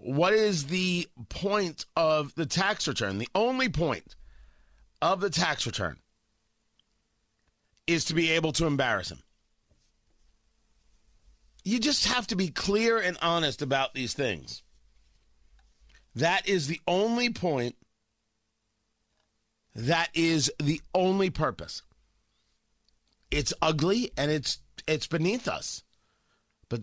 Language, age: English, 40-59